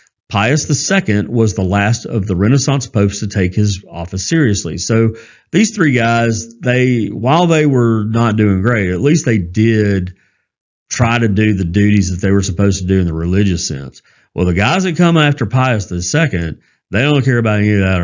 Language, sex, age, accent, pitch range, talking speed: English, male, 40-59, American, 95-120 Hz, 195 wpm